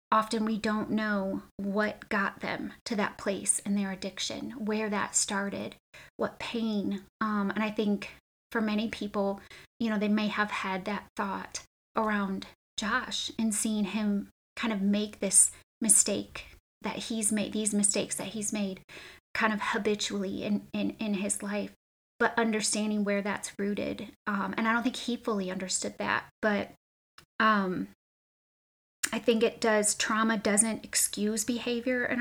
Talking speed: 155 wpm